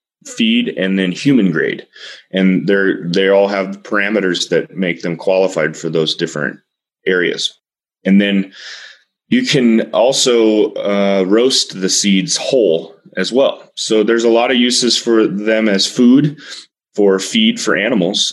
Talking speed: 145 wpm